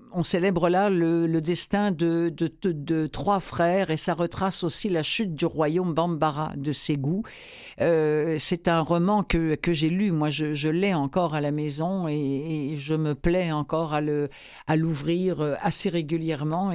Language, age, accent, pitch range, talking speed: French, 60-79, French, 150-180 Hz, 185 wpm